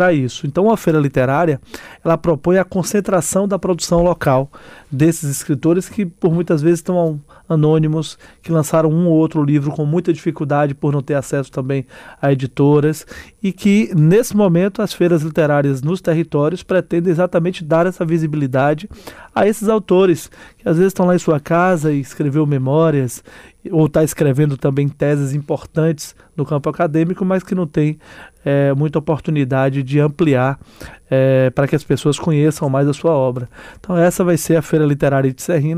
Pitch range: 140-175 Hz